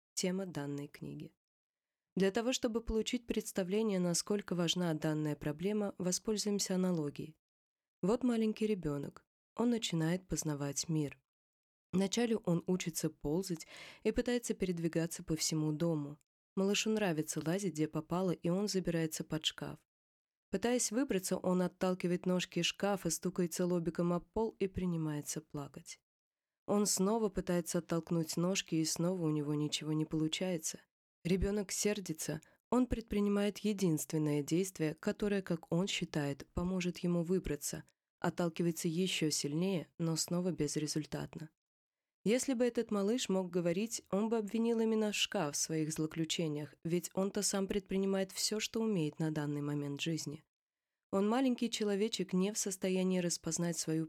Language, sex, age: Russian, female, 20-39